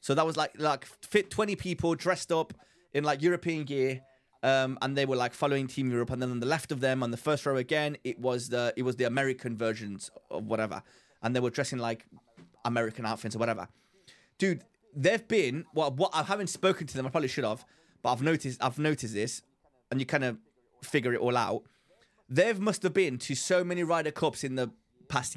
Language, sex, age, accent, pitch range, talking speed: English, male, 30-49, British, 125-170 Hz, 220 wpm